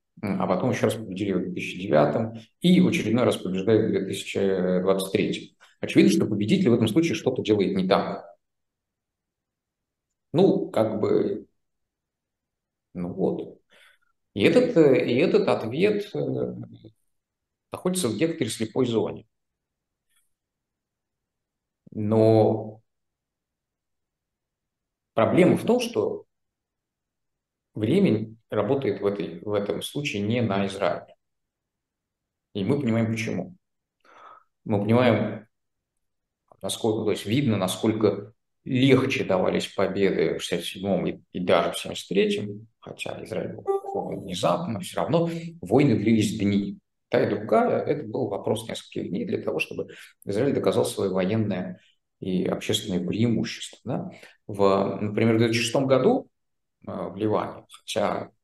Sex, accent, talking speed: male, native, 115 wpm